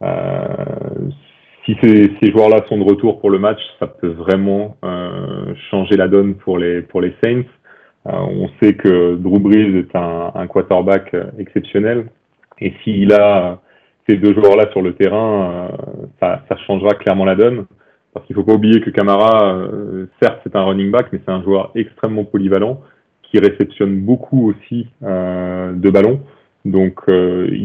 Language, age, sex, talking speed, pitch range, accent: French, 30-49, male, 170 wpm, 95-110 Hz, French